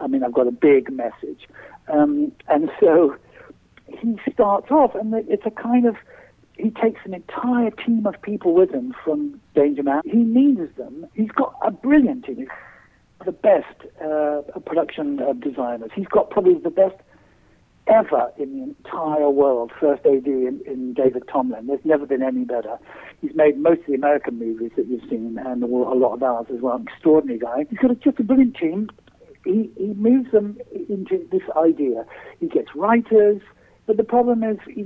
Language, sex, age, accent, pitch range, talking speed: English, male, 60-79, British, 145-240 Hz, 180 wpm